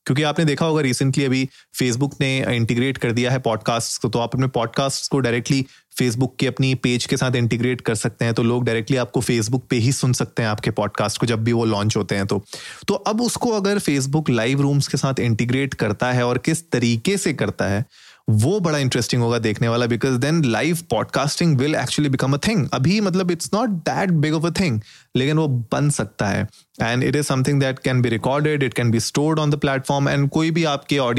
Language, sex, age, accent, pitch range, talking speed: Hindi, male, 30-49, native, 115-140 Hz, 190 wpm